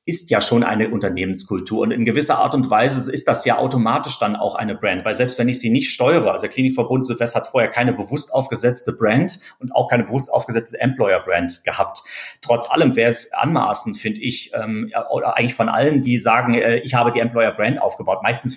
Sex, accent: male, German